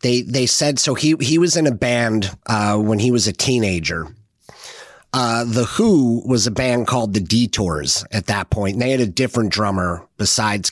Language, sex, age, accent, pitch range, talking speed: English, male, 30-49, American, 95-120 Hz, 195 wpm